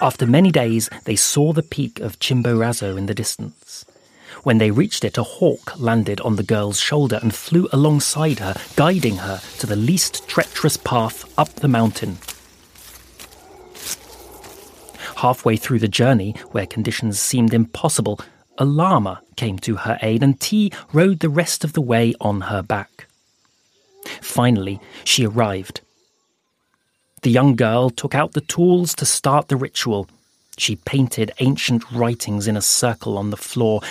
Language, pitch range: English, 105-140 Hz